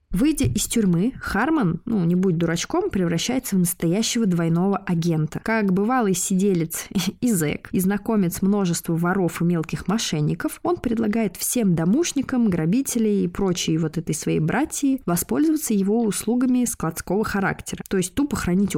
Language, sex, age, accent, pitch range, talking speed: Russian, female, 20-39, native, 170-225 Hz, 145 wpm